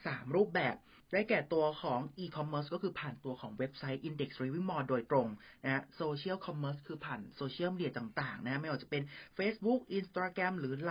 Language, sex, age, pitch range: Thai, male, 30-49, 130-165 Hz